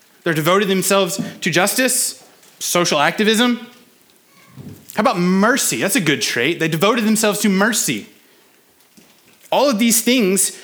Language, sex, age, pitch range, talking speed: English, male, 20-39, 160-215 Hz, 130 wpm